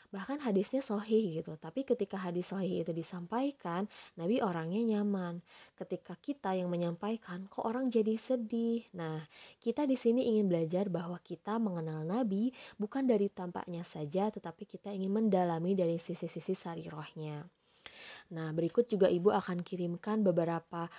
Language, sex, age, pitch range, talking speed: Indonesian, female, 20-39, 175-210 Hz, 145 wpm